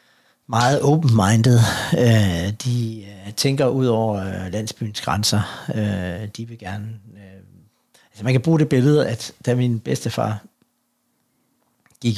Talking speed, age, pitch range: 105 wpm, 60-79, 100-125 Hz